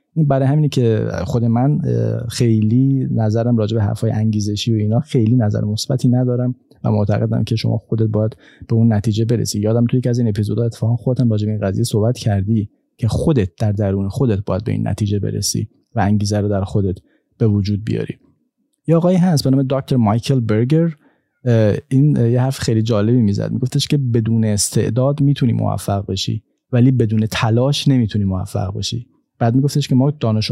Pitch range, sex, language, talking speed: 110-130 Hz, male, Persian, 180 wpm